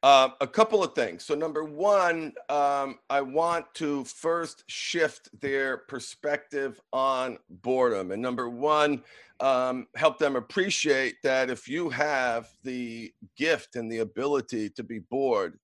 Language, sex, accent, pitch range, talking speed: English, male, American, 130-155 Hz, 140 wpm